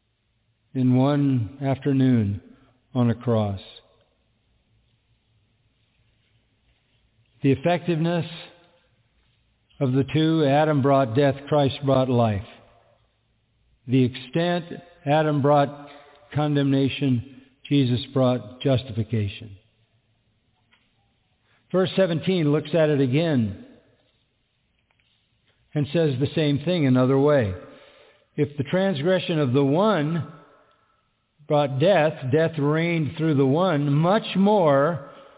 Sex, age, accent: male, 50-69, American